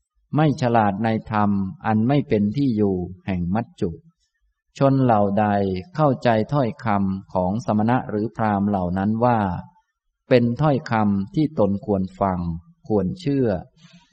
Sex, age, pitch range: male, 20-39, 100-130 Hz